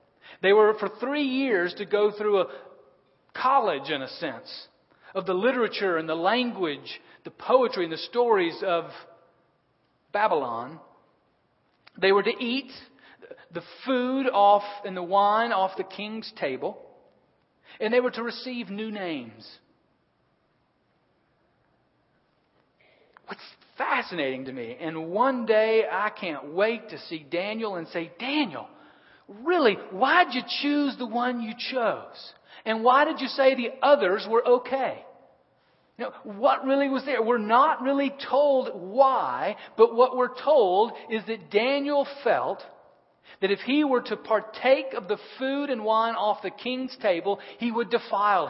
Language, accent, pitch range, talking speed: English, American, 200-255 Hz, 145 wpm